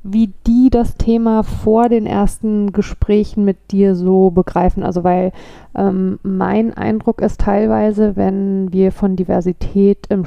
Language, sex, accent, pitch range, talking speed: German, female, German, 185-205 Hz, 140 wpm